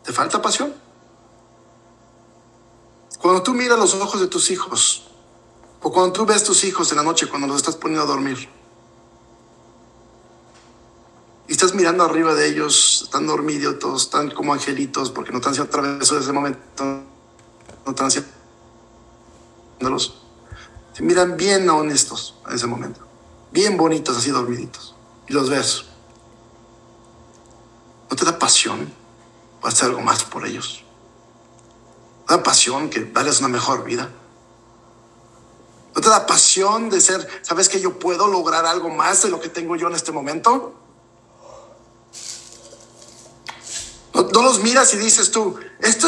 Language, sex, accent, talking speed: Spanish, male, Mexican, 140 wpm